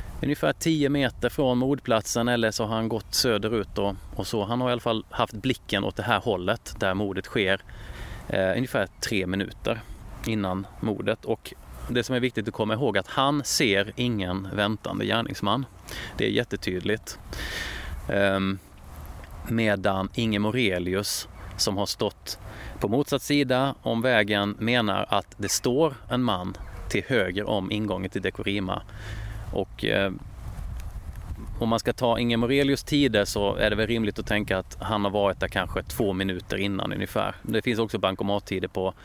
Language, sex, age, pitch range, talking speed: Swedish, male, 30-49, 95-115 Hz, 165 wpm